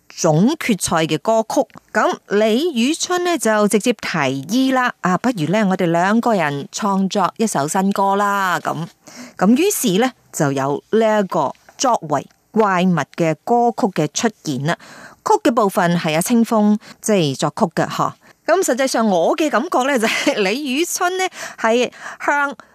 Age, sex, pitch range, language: 30-49, female, 175-260 Hz, Chinese